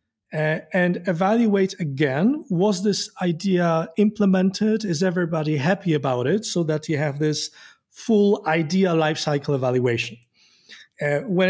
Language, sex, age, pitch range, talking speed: English, male, 30-49, 145-180 Hz, 125 wpm